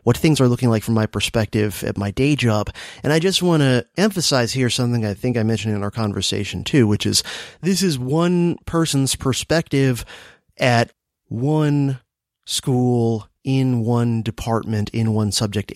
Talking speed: 170 wpm